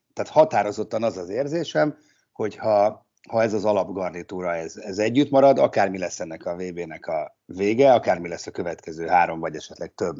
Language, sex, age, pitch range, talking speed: Hungarian, male, 60-79, 90-135 Hz, 175 wpm